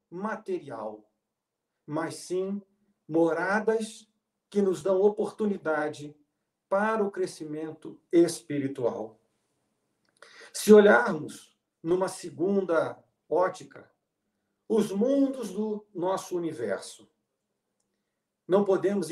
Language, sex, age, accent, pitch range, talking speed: Portuguese, male, 50-69, Brazilian, 155-205 Hz, 75 wpm